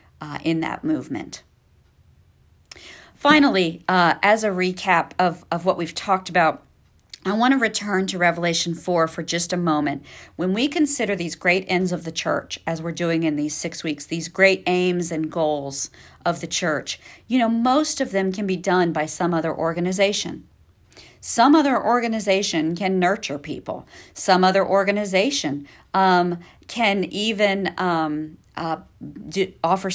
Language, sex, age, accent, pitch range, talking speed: English, female, 50-69, American, 160-195 Hz, 155 wpm